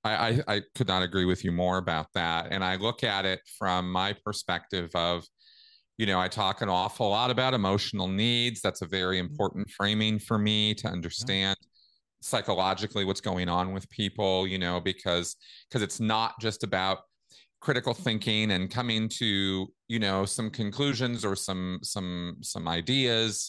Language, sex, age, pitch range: English, male, 40-59, 95-115 Hz